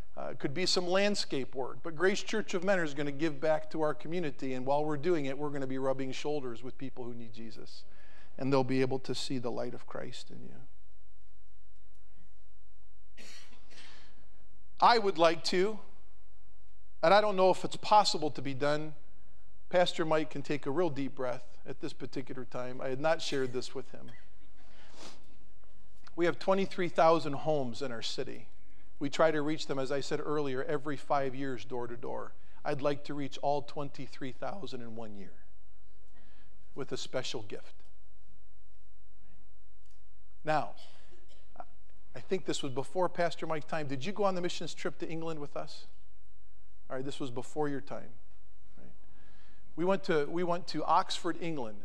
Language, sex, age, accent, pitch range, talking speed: English, male, 40-59, American, 100-165 Hz, 175 wpm